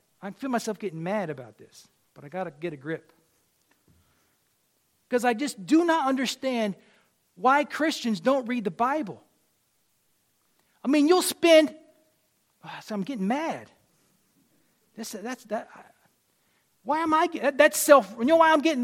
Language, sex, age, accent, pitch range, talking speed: English, male, 40-59, American, 200-285 Hz, 155 wpm